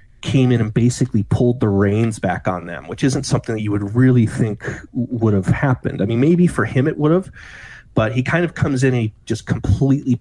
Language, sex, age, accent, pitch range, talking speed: English, male, 30-49, American, 105-130 Hz, 230 wpm